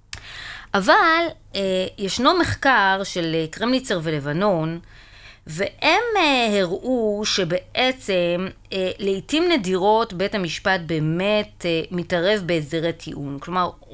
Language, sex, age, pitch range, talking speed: Hebrew, female, 20-39, 165-210 Hz, 80 wpm